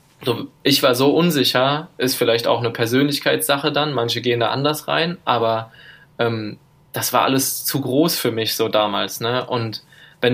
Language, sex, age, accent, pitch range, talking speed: German, male, 20-39, German, 110-140 Hz, 175 wpm